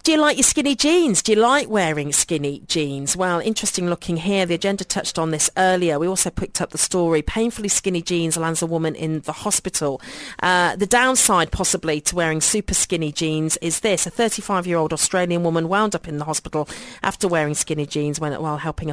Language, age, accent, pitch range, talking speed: English, 40-59, British, 160-200 Hz, 200 wpm